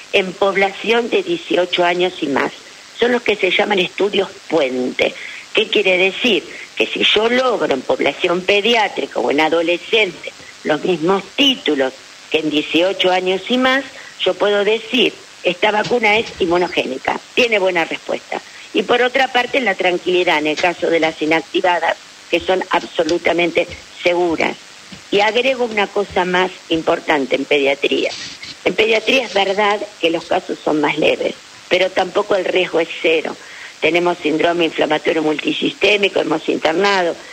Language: Spanish